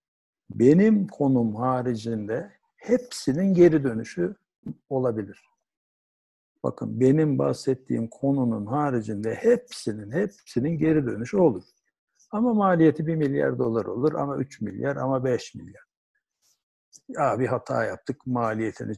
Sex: male